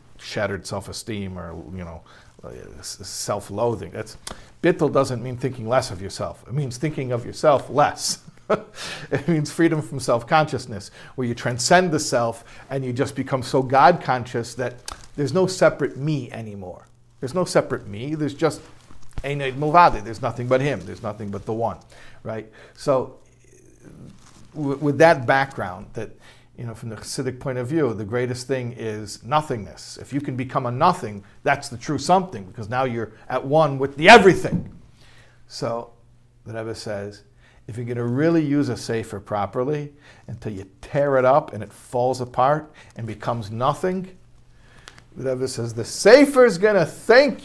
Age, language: 50-69, English